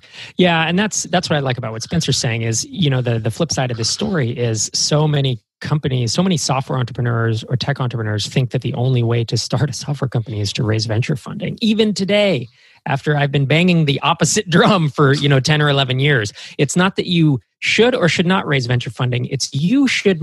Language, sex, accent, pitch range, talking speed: English, male, American, 130-170 Hz, 230 wpm